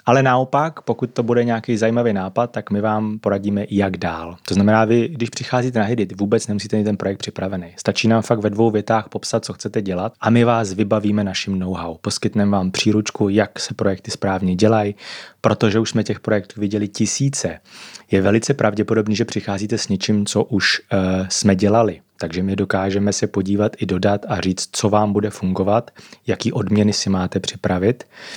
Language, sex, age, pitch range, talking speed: Czech, male, 30-49, 100-115 Hz, 185 wpm